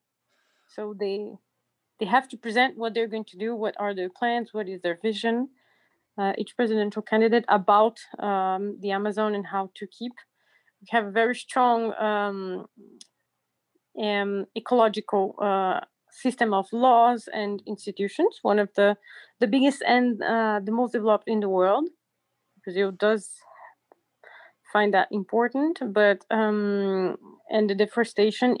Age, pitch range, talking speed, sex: 30-49, 205-240 Hz, 145 wpm, female